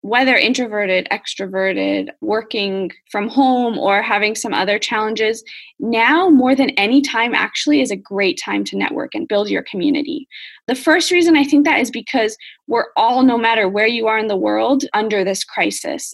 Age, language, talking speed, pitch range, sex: 10-29, English, 180 wpm, 220-295 Hz, female